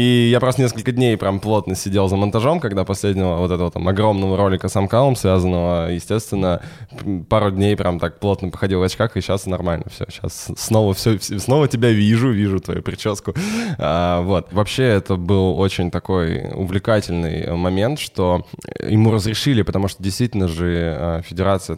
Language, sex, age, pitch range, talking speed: Russian, male, 10-29, 90-110 Hz, 155 wpm